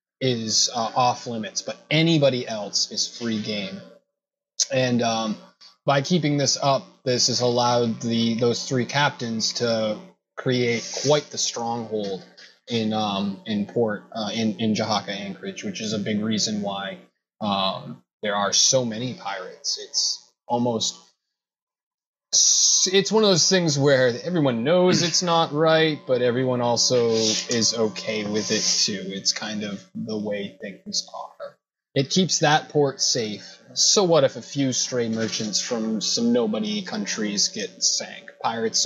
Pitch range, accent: 110-160 Hz, American